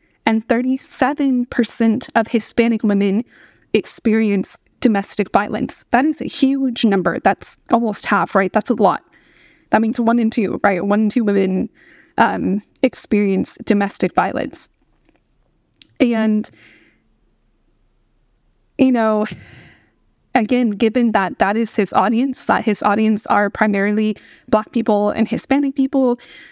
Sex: female